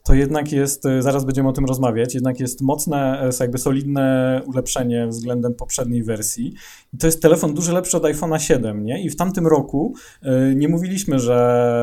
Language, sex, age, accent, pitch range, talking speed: Polish, male, 20-39, native, 110-135 Hz, 180 wpm